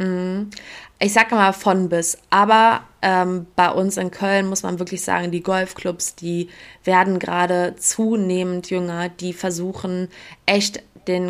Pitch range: 175-195 Hz